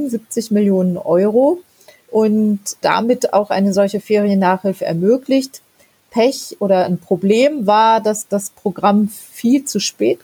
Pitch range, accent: 180-210 Hz, German